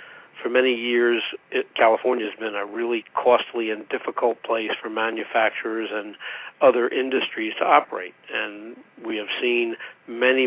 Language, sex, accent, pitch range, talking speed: English, male, American, 110-125 Hz, 140 wpm